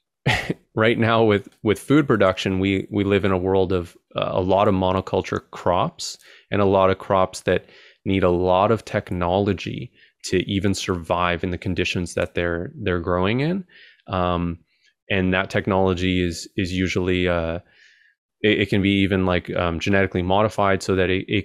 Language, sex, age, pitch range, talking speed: English, male, 20-39, 90-105 Hz, 175 wpm